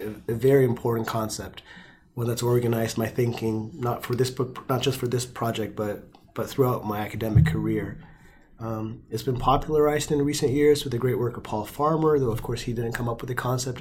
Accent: American